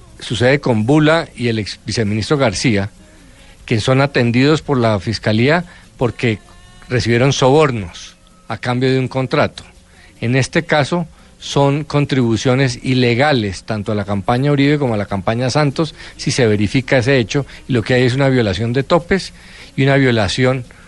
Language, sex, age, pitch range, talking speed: Spanish, male, 40-59, 115-145 Hz, 160 wpm